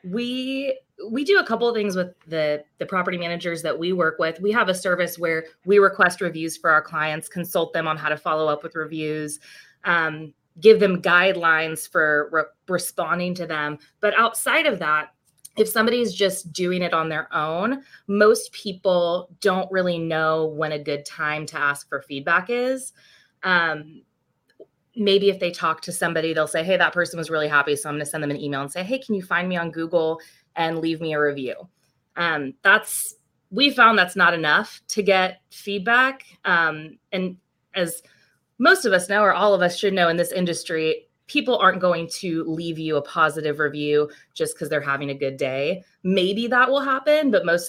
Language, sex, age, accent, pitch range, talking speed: English, female, 20-39, American, 155-195 Hz, 195 wpm